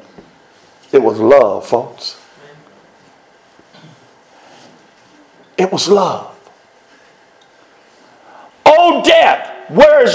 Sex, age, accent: male, 60-79, American